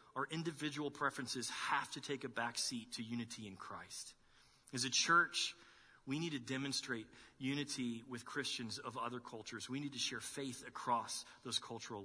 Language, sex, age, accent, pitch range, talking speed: English, male, 40-59, American, 120-145 Hz, 170 wpm